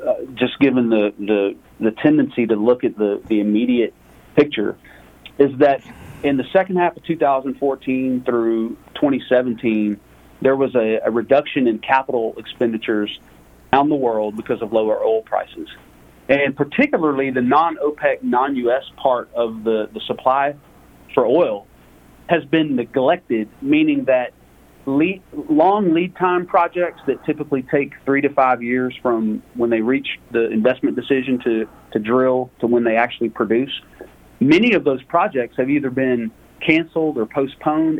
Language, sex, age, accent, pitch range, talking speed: English, male, 40-59, American, 110-150 Hz, 145 wpm